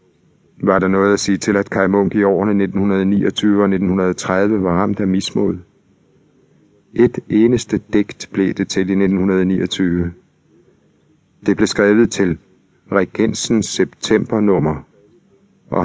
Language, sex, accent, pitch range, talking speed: Danish, male, native, 95-100 Hz, 125 wpm